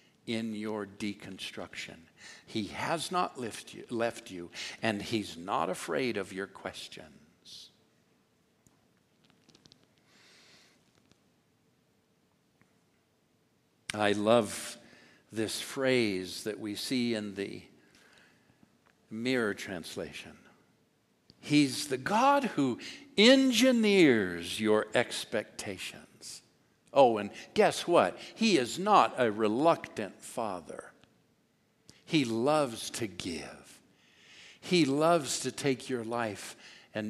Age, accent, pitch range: 60-79, American, 105-150 Hz